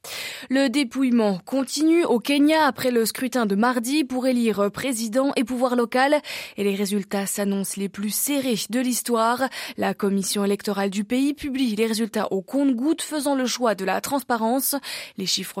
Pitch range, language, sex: 205-255 Hz, French, female